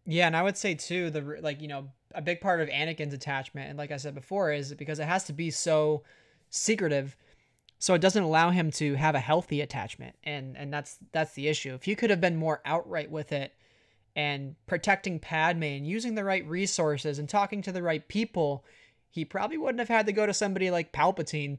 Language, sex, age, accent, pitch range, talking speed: English, male, 20-39, American, 145-170 Hz, 220 wpm